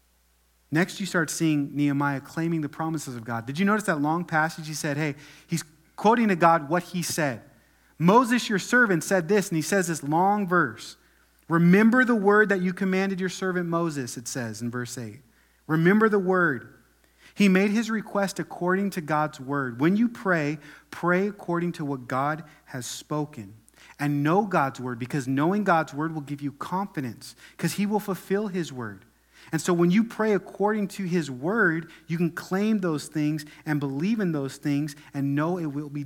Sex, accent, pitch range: male, American, 135-180 Hz